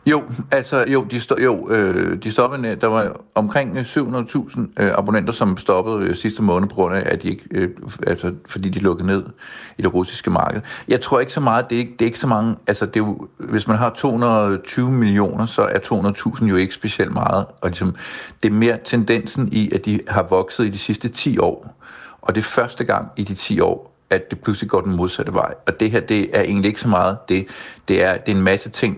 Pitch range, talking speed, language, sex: 100-115 Hz, 235 wpm, Danish, male